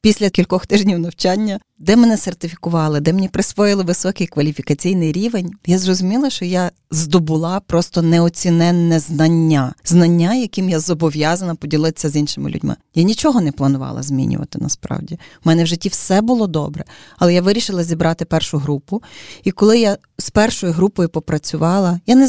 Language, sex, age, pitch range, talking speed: Ukrainian, female, 20-39, 165-215 Hz, 155 wpm